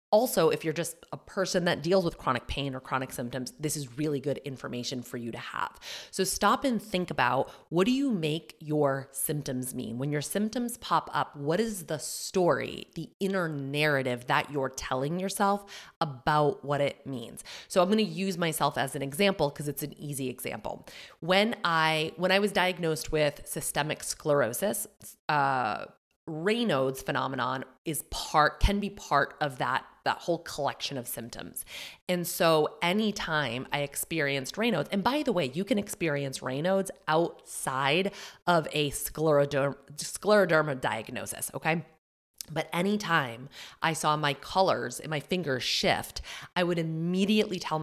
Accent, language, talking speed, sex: American, English, 160 wpm, female